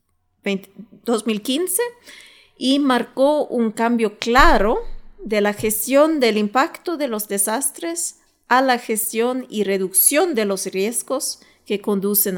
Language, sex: Spanish, female